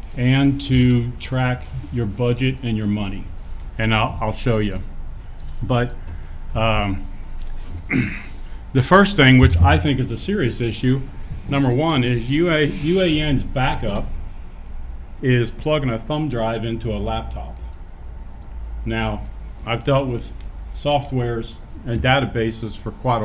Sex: male